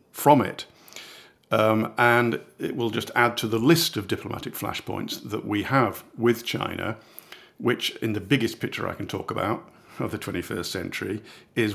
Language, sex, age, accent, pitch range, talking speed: English, male, 50-69, British, 95-115 Hz, 170 wpm